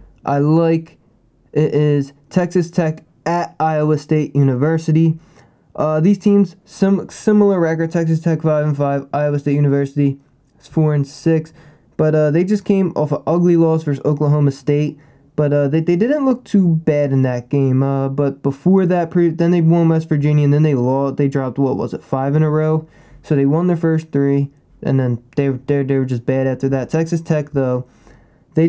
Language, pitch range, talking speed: English, 135-160 Hz, 195 wpm